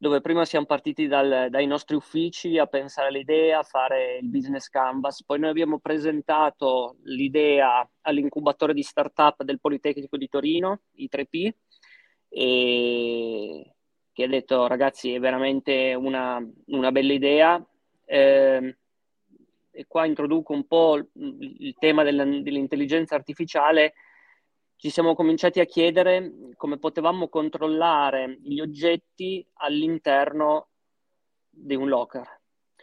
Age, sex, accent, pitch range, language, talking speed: 20-39, male, native, 140-165 Hz, Italian, 115 wpm